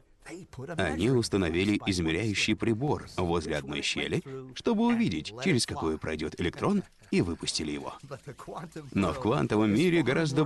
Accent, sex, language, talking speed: native, male, Russian, 120 wpm